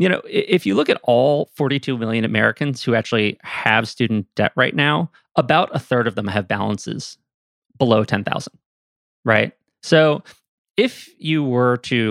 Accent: American